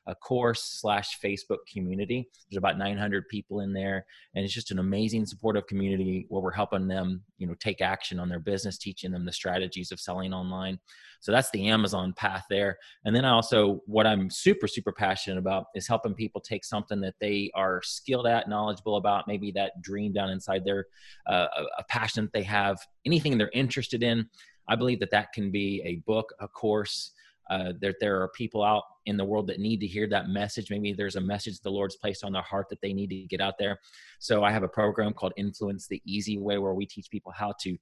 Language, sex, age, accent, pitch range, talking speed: English, male, 30-49, American, 95-110 Hz, 225 wpm